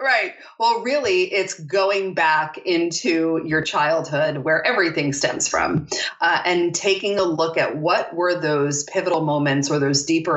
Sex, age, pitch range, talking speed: female, 30-49, 150-180 Hz, 155 wpm